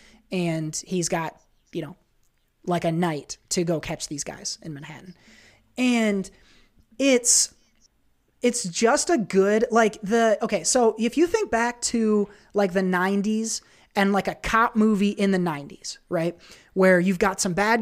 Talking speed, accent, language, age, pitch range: 160 wpm, American, English, 20-39, 175-210 Hz